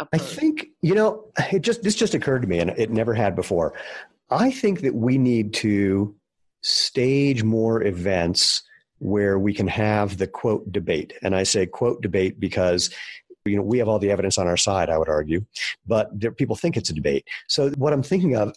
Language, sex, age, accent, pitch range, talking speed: English, male, 40-59, American, 100-130 Hz, 205 wpm